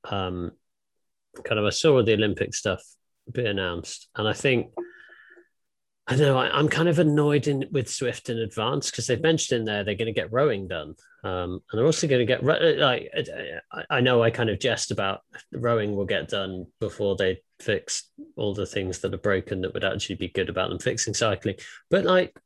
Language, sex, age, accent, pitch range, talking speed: English, male, 30-49, British, 105-155 Hz, 205 wpm